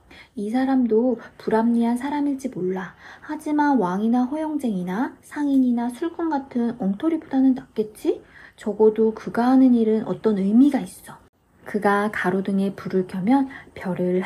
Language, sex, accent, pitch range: Korean, female, native, 195-265 Hz